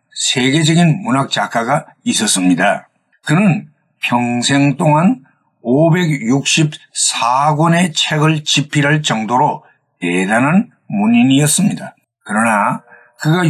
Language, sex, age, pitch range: Korean, male, 60-79, 145-190 Hz